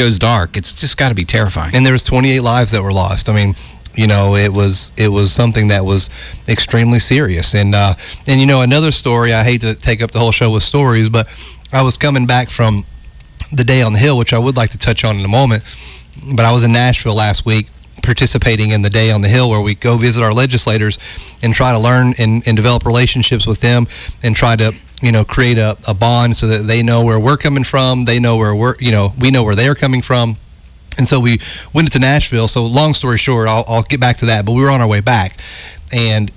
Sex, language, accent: male, English, American